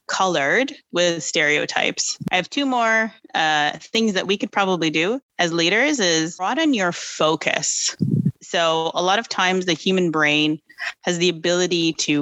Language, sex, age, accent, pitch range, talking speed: English, female, 30-49, American, 160-195 Hz, 155 wpm